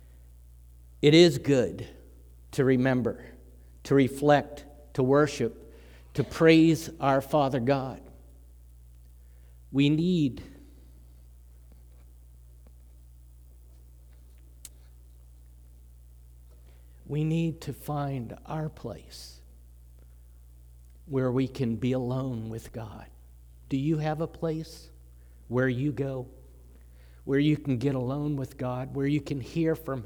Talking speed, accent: 100 wpm, American